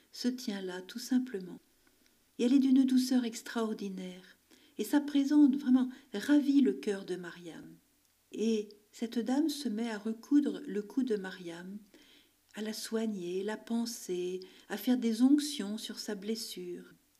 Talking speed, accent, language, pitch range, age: 150 wpm, French, French, 200-275 Hz, 50-69